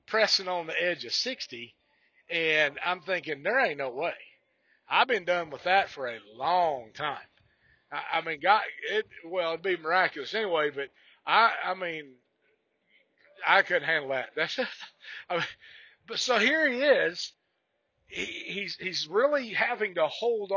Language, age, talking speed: English, 50-69, 165 wpm